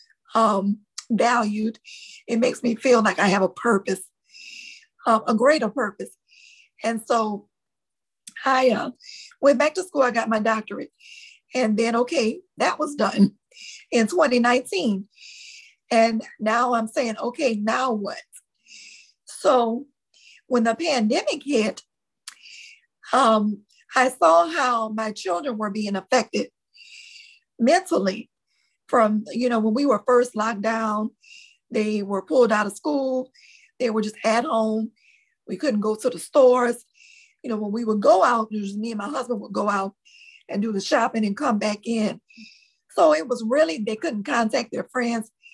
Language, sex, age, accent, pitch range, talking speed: English, female, 50-69, American, 215-280 Hz, 150 wpm